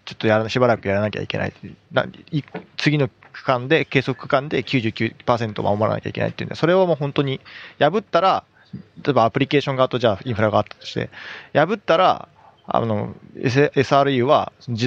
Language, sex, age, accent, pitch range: Japanese, male, 20-39, native, 110-150 Hz